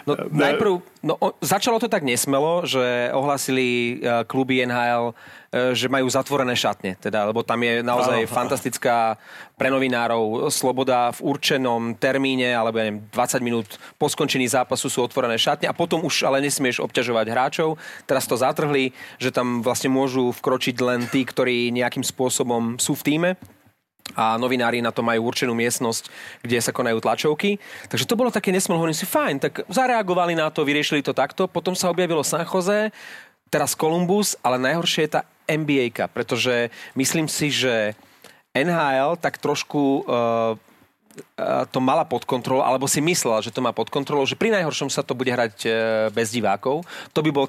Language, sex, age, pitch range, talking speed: Slovak, male, 30-49, 120-155 Hz, 165 wpm